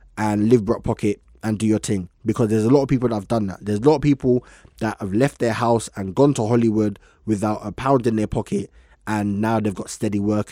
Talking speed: 245 wpm